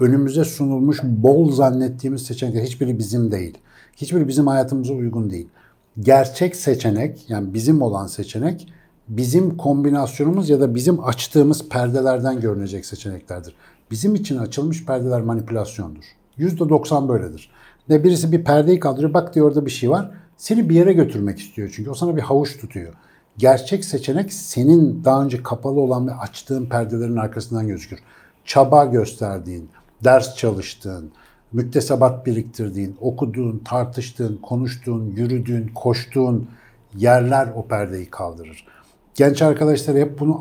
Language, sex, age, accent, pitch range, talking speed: Turkish, male, 60-79, native, 115-140 Hz, 130 wpm